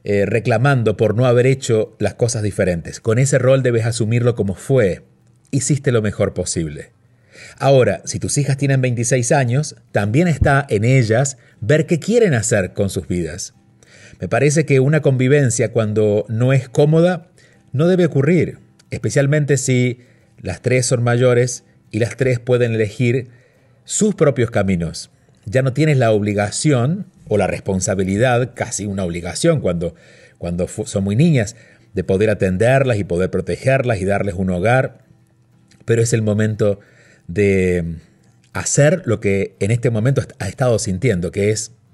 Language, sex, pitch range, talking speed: Spanish, male, 105-140 Hz, 150 wpm